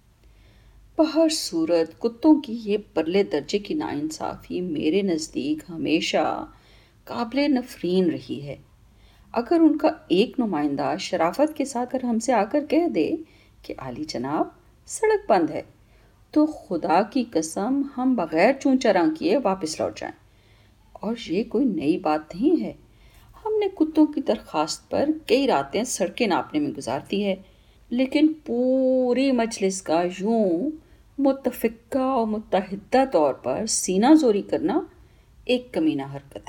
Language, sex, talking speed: Urdu, female, 140 wpm